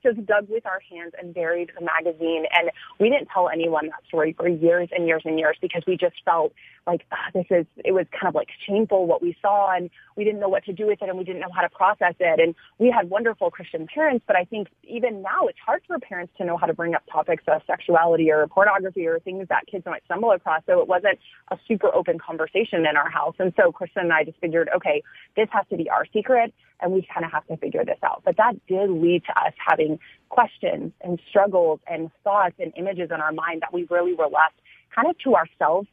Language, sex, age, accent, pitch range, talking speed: English, female, 30-49, American, 165-200 Hz, 245 wpm